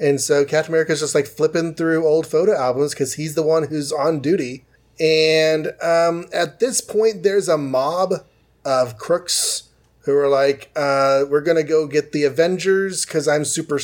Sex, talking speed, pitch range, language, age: male, 180 wpm, 140-180 Hz, English, 30-49